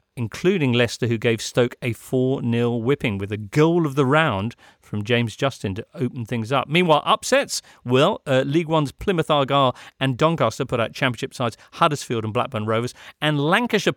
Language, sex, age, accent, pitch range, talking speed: English, male, 40-59, British, 120-155 Hz, 175 wpm